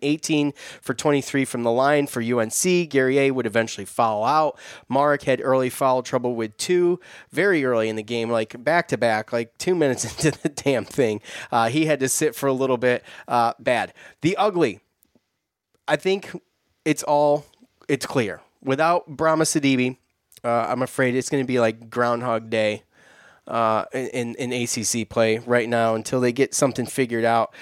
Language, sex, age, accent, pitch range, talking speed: English, male, 20-39, American, 125-145 Hz, 170 wpm